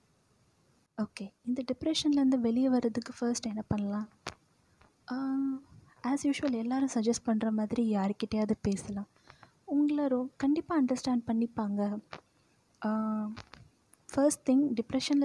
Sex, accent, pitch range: female, native, 225-275 Hz